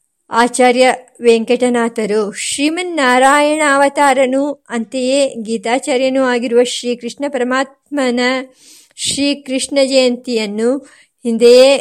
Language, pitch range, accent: Kannada, 230-265 Hz, native